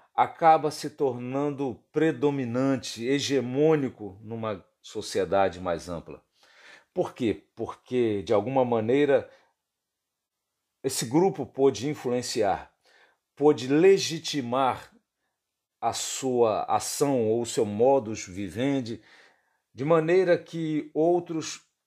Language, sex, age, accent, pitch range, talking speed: Portuguese, male, 50-69, Brazilian, 100-140 Hz, 90 wpm